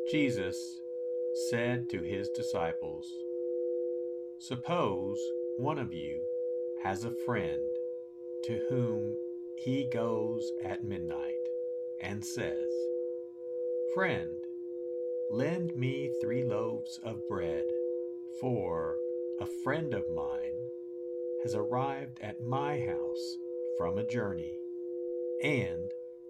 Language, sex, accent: English, male, American